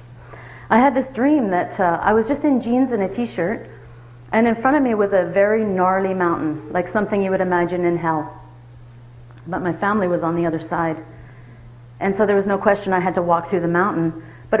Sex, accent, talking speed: female, American, 220 wpm